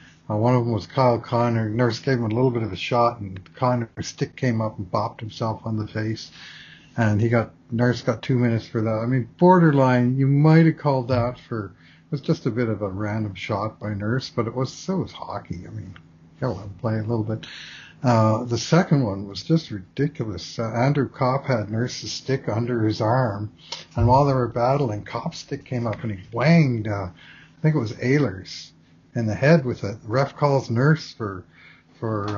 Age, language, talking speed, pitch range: 60-79, English, 215 wpm, 110-130 Hz